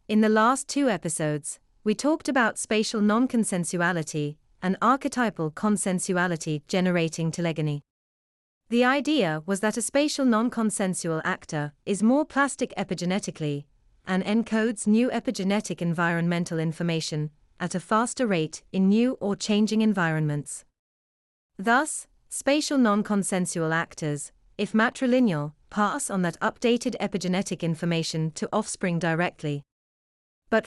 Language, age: English, 30-49